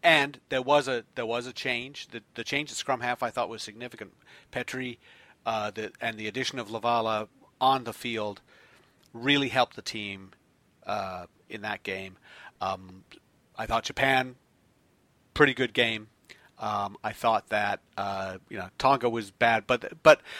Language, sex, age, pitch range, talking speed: English, male, 40-59, 115-145 Hz, 165 wpm